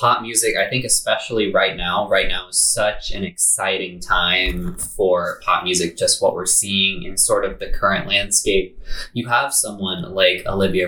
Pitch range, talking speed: 95-110 Hz, 175 wpm